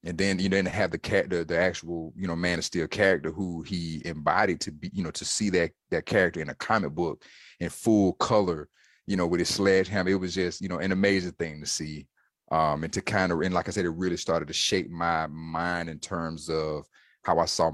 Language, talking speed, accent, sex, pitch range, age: English, 240 wpm, American, male, 80-90 Hz, 30-49